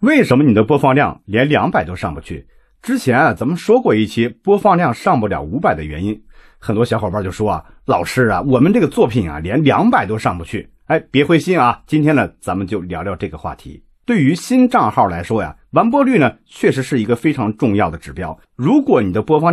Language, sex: Chinese, male